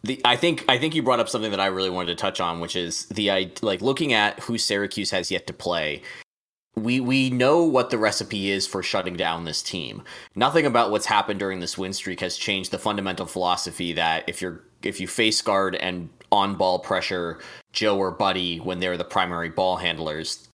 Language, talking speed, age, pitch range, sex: English, 215 wpm, 20-39, 90-110 Hz, male